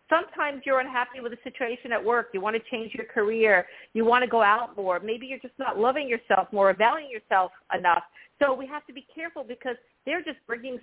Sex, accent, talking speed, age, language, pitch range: female, American, 225 wpm, 50-69, English, 200-250 Hz